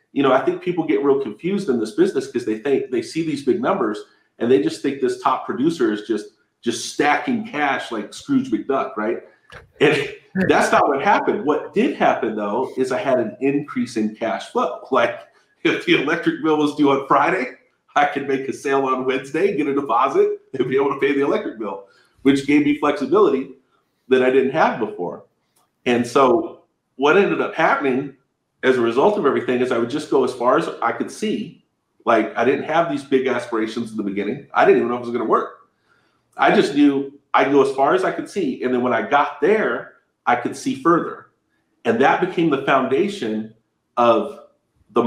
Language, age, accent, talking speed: English, 40-59, American, 210 wpm